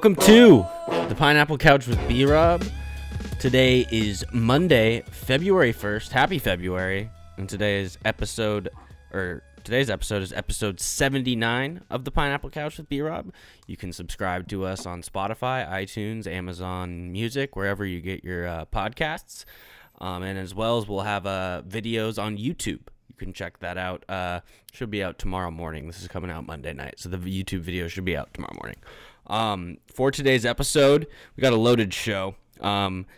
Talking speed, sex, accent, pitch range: 165 wpm, male, American, 95-115 Hz